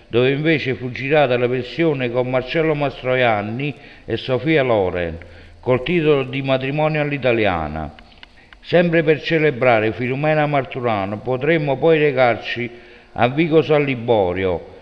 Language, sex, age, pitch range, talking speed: Italian, male, 50-69, 120-155 Hz, 115 wpm